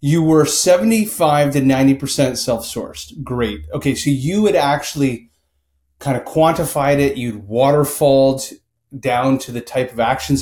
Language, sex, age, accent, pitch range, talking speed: English, male, 30-49, American, 105-140 Hz, 140 wpm